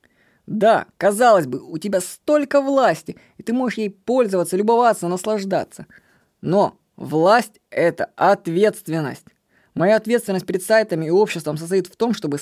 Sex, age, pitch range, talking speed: female, 20-39, 170-230 Hz, 135 wpm